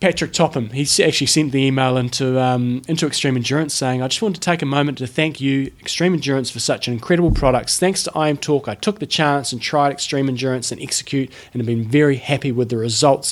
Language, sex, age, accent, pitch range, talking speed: English, male, 20-39, Australian, 120-145 Hz, 235 wpm